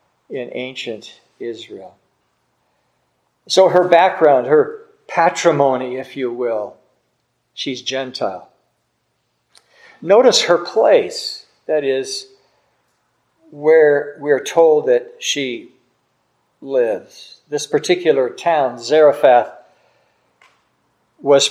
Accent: American